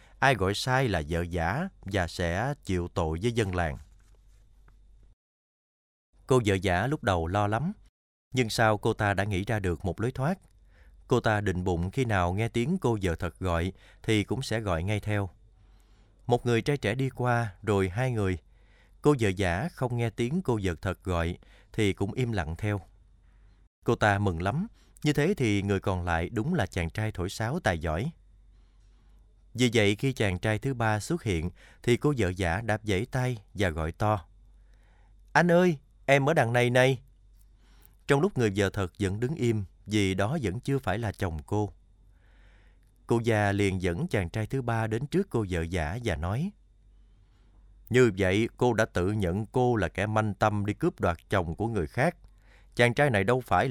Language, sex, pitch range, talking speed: Vietnamese, male, 95-120 Hz, 190 wpm